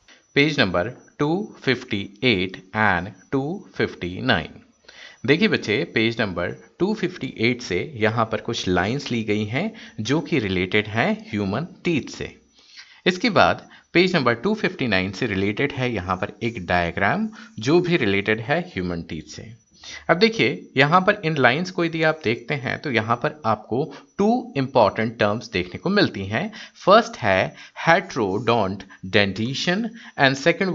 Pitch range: 110-180 Hz